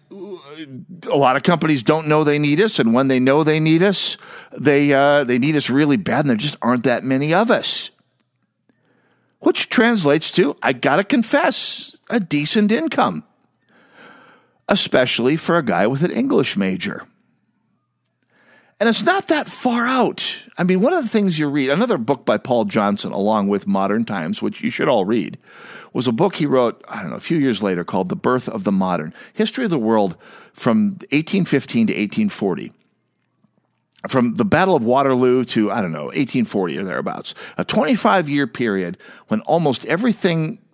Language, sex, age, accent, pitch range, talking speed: English, male, 50-69, American, 135-215 Hz, 180 wpm